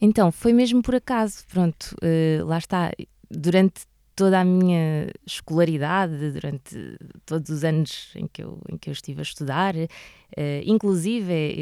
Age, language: 20-39, Portuguese